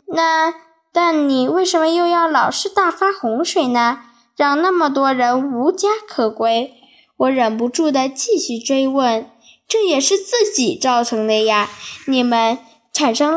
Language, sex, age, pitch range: Chinese, female, 10-29, 235-330 Hz